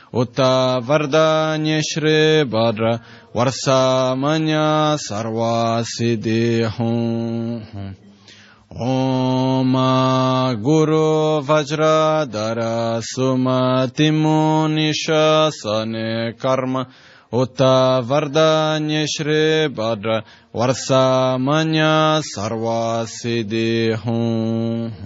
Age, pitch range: 20-39, 115-155 Hz